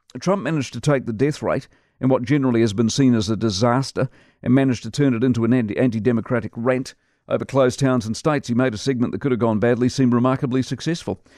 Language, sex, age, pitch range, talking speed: English, male, 50-69, 115-135 Hz, 220 wpm